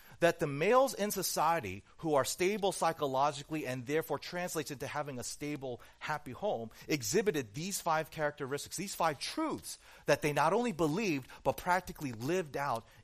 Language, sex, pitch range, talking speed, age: English, male, 120-175 Hz, 155 wpm, 40-59